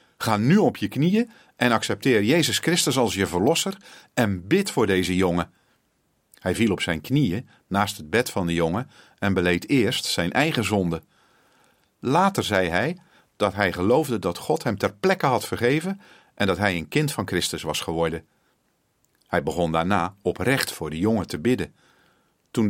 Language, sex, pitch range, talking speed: Dutch, male, 90-125 Hz, 175 wpm